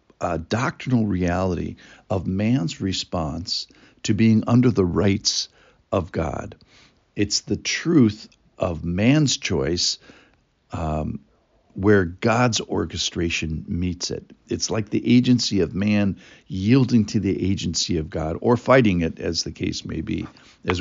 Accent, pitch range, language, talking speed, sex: American, 90-125 Hz, English, 130 wpm, male